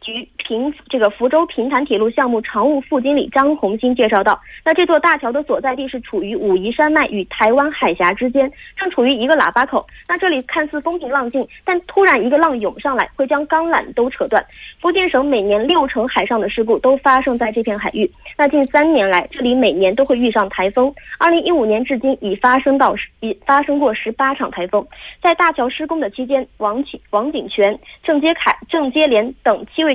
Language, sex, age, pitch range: Korean, female, 20-39, 230-305 Hz